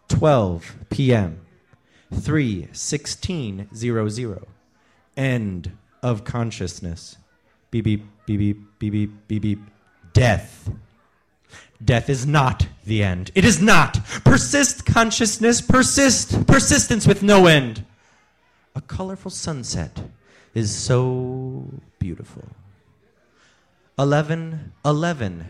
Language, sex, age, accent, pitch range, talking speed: English, male, 30-49, American, 105-155 Hz, 95 wpm